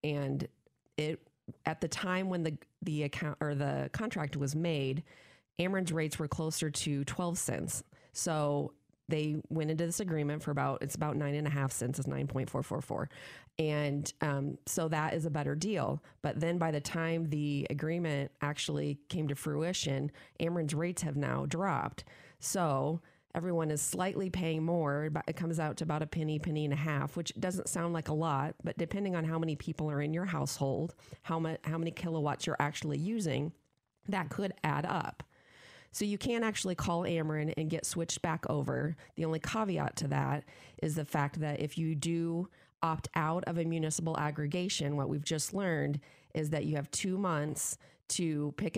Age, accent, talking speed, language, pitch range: 30-49, American, 185 wpm, English, 145-170 Hz